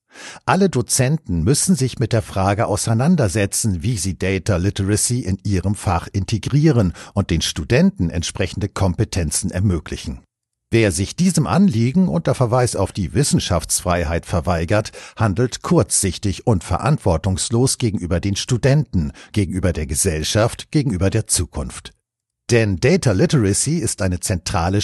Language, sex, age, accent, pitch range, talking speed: German, male, 50-69, German, 90-125 Hz, 125 wpm